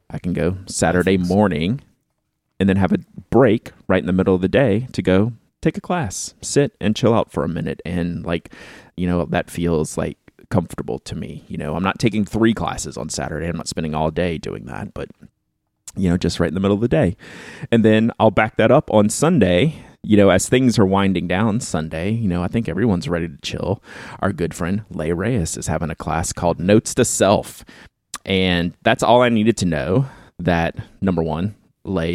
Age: 30-49